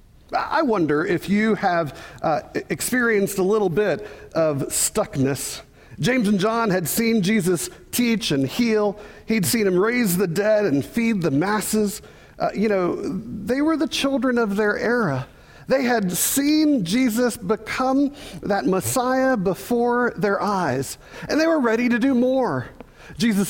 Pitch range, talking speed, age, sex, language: 175-235 Hz, 150 wpm, 50-69, male, English